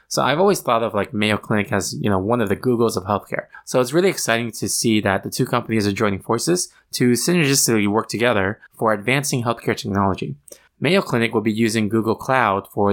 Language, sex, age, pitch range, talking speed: English, male, 20-39, 105-125 Hz, 215 wpm